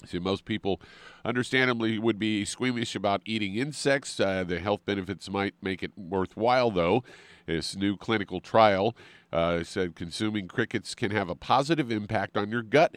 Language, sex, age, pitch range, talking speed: English, male, 50-69, 90-110 Hz, 160 wpm